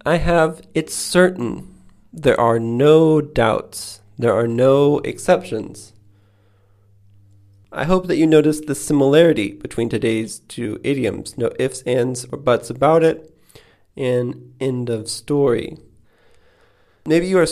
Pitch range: 105-140 Hz